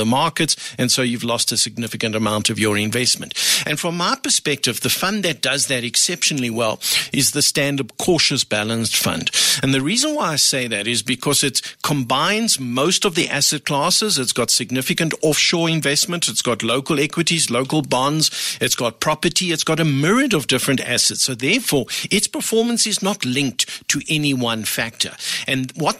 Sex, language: male, English